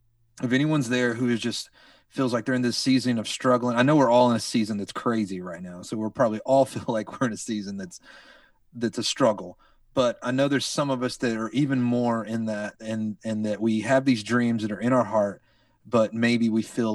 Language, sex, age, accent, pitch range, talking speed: English, male, 30-49, American, 105-120 Hz, 240 wpm